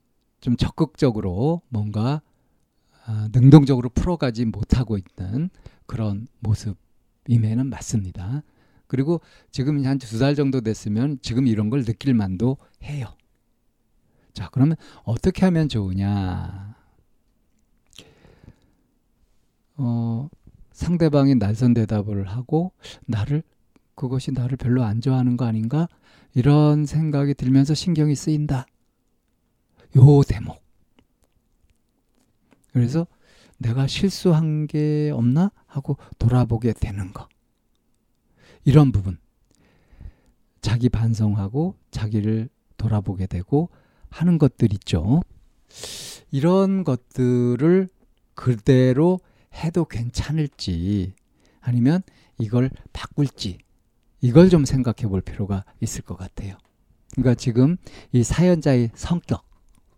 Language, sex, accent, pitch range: Korean, male, native, 110-145 Hz